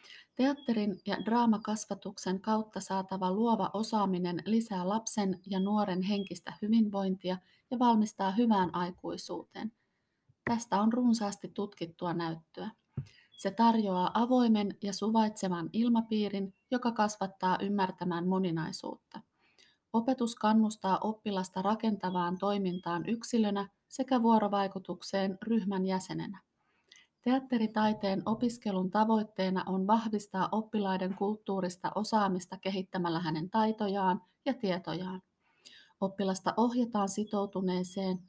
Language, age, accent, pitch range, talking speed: Finnish, 30-49, native, 185-215 Hz, 90 wpm